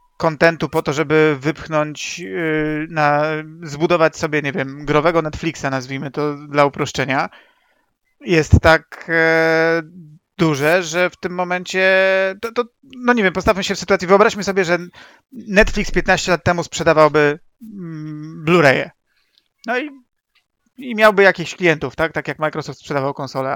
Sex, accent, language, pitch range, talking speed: male, native, Polish, 150-190 Hz, 135 wpm